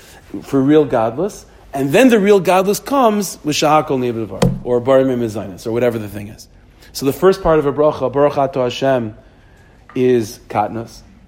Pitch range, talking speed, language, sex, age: 120-155 Hz, 160 wpm, English, male, 40-59